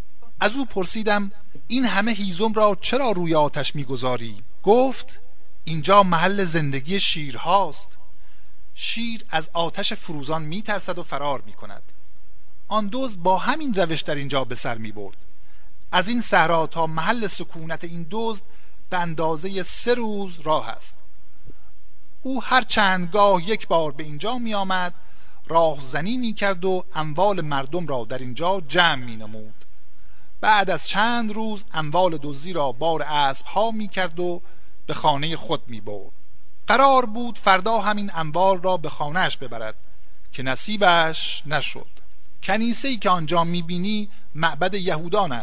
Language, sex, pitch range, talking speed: Persian, male, 150-200 Hz, 145 wpm